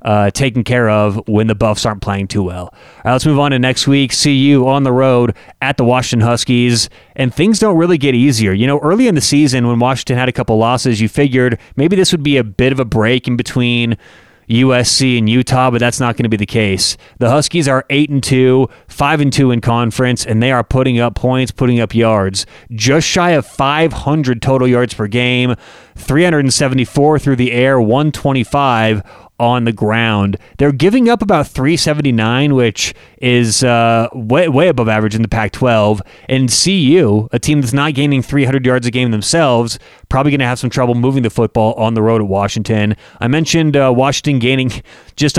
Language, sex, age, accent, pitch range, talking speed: English, male, 30-49, American, 115-140 Hz, 200 wpm